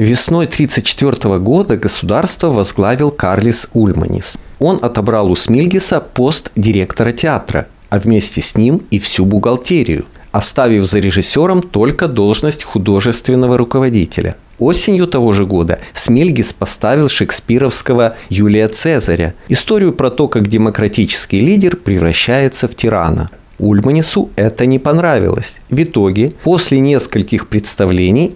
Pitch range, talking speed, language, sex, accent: 100-135 Hz, 115 wpm, Russian, male, native